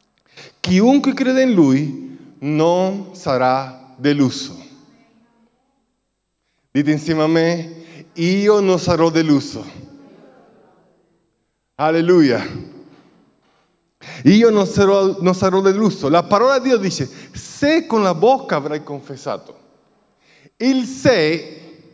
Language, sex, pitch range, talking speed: Italian, male, 155-250 Hz, 90 wpm